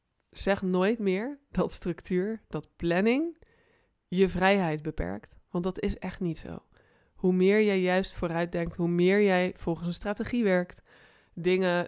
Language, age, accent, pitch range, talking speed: Dutch, 20-39, Dutch, 170-195 Hz, 150 wpm